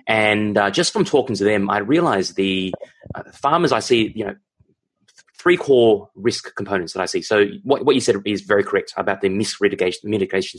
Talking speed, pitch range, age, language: 200 wpm, 100-120 Hz, 20-39, English